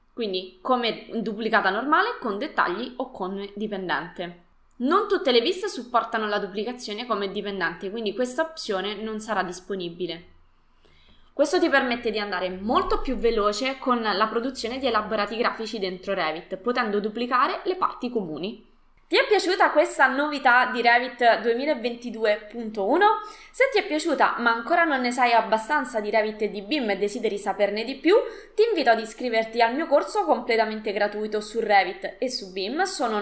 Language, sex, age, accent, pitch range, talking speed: Italian, female, 20-39, native, 210-275 Hz, 160 wpm